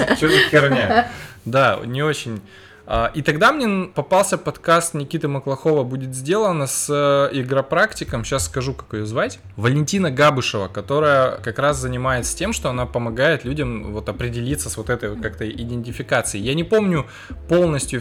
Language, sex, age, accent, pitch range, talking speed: Russian, male, 20-39, native, 120-150 Hz, 140 wpm